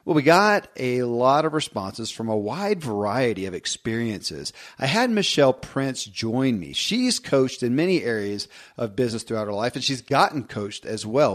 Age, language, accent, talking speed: 40-59, English, American, 185 wpm